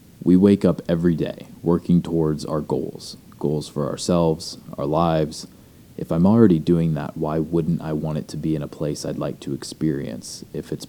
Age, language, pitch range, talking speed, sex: 30-49, English, 75-85 Hz, 195 wpm, male